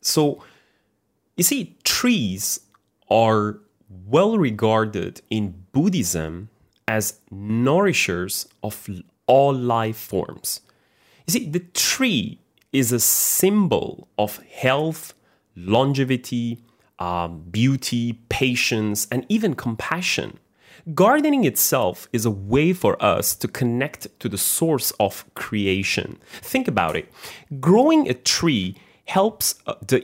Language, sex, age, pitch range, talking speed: English, male, 30-49, 105-155 Hz, 105 wpm